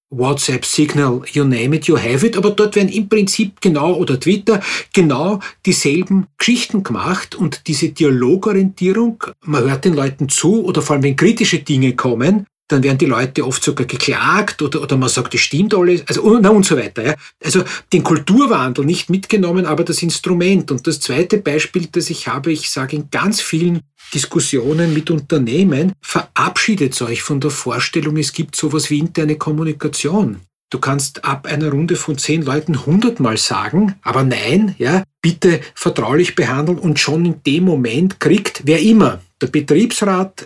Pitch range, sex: 140-185 Hz, male